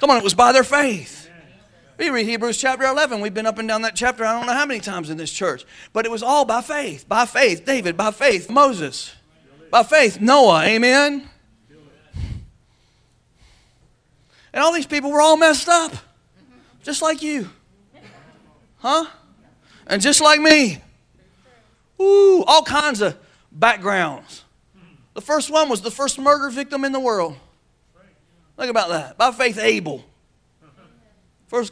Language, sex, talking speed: English, male, 155 wpm